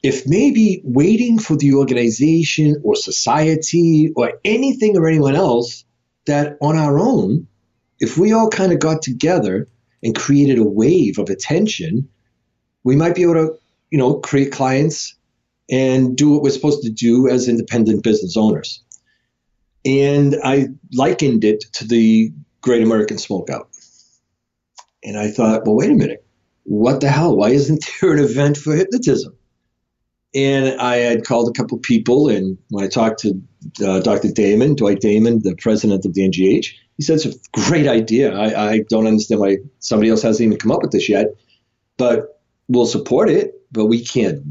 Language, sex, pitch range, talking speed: English, male, 110-145 Hz, 170 wpm